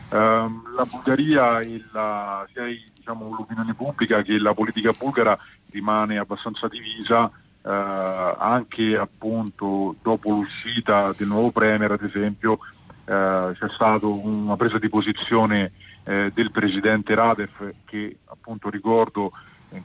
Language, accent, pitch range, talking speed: Italian, native, 105-115 Hz, 125 wpm